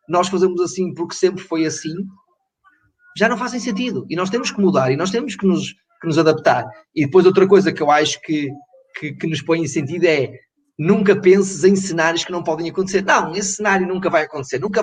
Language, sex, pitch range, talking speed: Portuguese, male, 155-195 Hz, 220 wpm